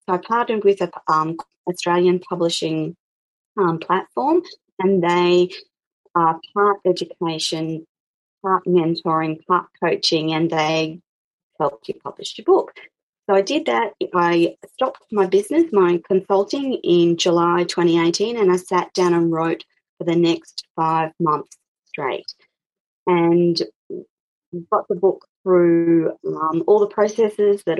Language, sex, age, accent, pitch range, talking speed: English, female, 30-49, Australian, 170-205 Hz, 130 wpm